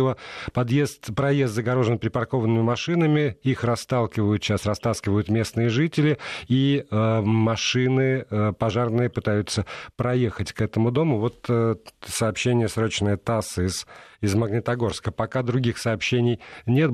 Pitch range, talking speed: 110-140 Hz, 115 wpm